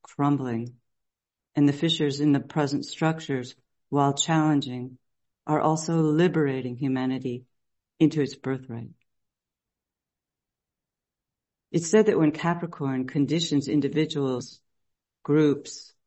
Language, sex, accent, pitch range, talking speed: English, female, American, 130-155 Hz, 95 wpm